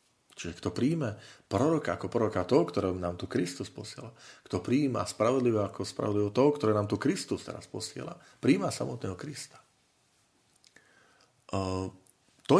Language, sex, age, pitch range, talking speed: Slovak, male, 40-59, 95-125 Hz, 135 wpm